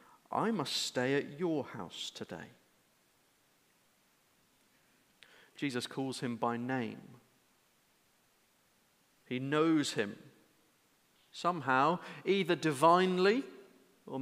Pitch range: 145-195 Hz